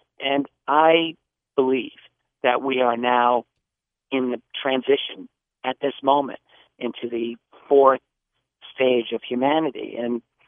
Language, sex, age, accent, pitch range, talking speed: English, male, 50-69, American, 120-135 Hz, 115 wpm